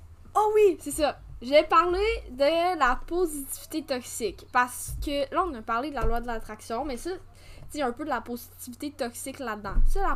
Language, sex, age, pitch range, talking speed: French, female, 10-29, 230-285 Hz, 195 wpm